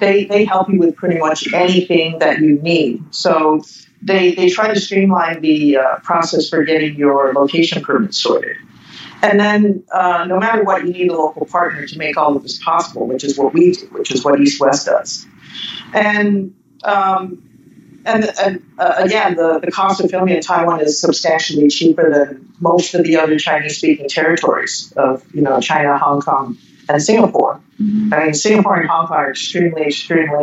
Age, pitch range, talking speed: 50-69, 155-195 Hz, 185 wpm